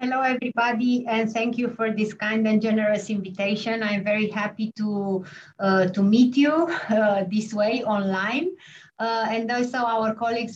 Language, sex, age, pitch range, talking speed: English, female, 30-49, 210-250 Hz, 165 wpm